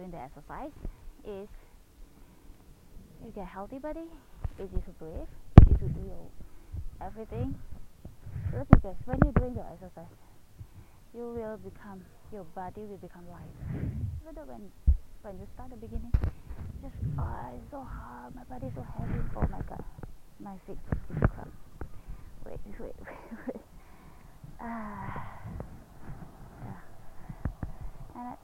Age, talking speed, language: 20-39, 130 wpm, Indonesian